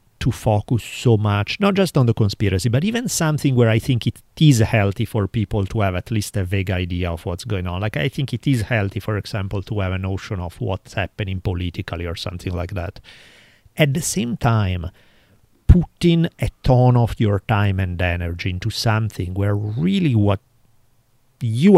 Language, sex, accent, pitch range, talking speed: English, male, Italian, 100-130 Hz, 190 wpm